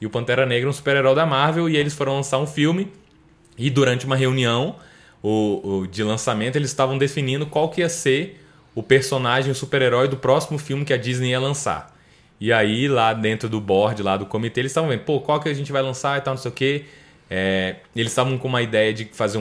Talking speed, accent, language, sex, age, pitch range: 220 wpm, Brazilian, Portuguese, male, 20-39, 105-135 Hz